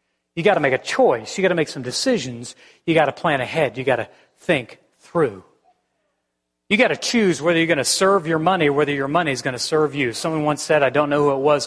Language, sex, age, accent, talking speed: English, male, 40-59, American, 260 wpm